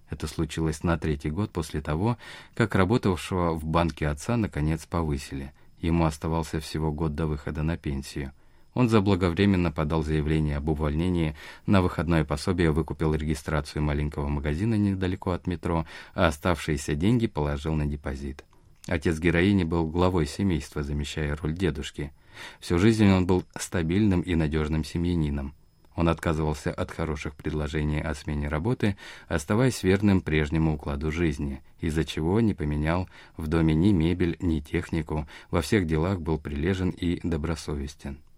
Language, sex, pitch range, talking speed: Russian, male, 75-95 Hz, 140 wpm